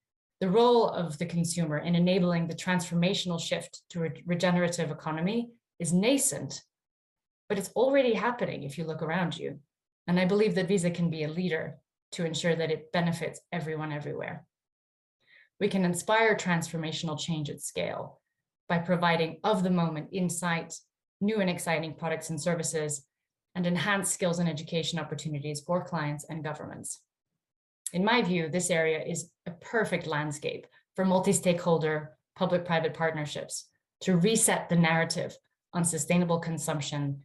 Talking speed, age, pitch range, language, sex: 145 wpm, 30-49, 155-180 Hz, Greek, female